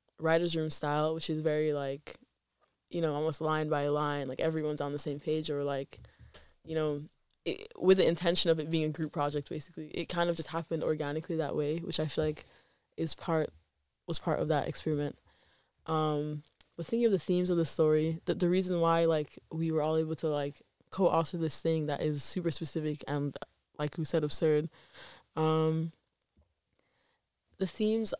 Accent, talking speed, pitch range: American, 185 wpm, 155-170 Hz